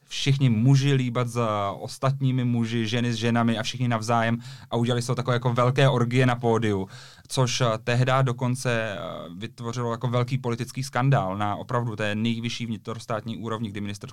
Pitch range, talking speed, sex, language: 110-125 Hz, 155 wpm, male, Czech